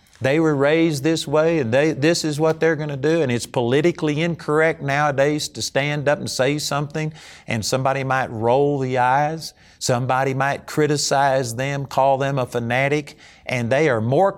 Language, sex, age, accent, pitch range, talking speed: English, male, 50-69, American, 115-155 Hz, 180 wpm